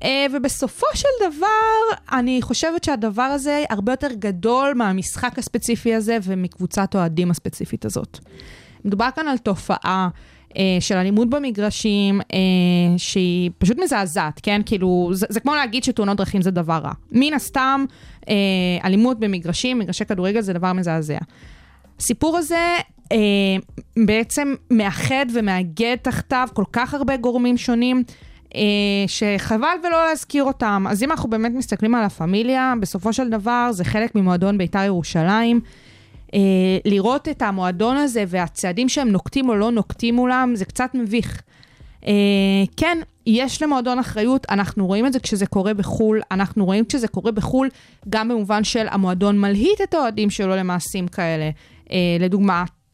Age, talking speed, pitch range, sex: 20-39, 140 wpm, 190-255 Hz, female